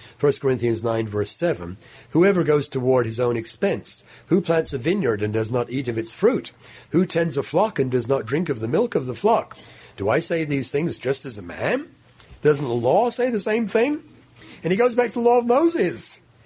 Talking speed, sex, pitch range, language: 220 wpm, male, 120-160 Hz, English